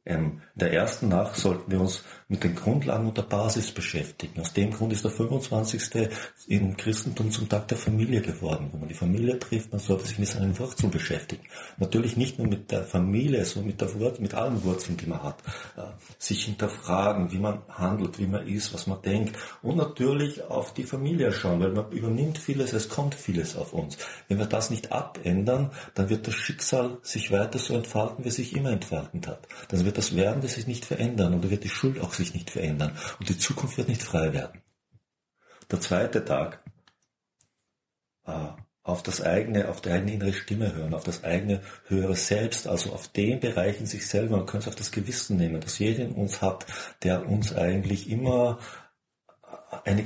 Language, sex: German, male